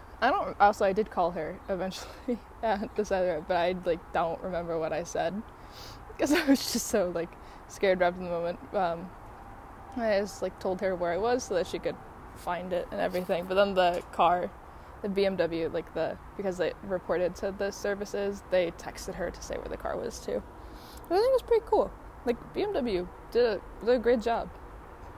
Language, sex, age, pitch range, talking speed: English, female, 10-29, 175-230 Hz, 210 wpm